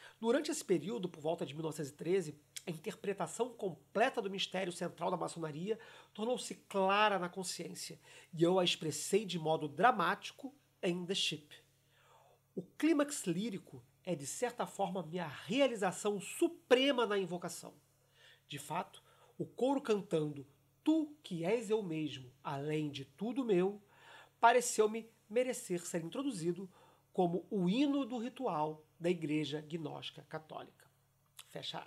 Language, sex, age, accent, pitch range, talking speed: Portuguese, male, 40-59, Brazilian, 160-220 Hz, 130 wpm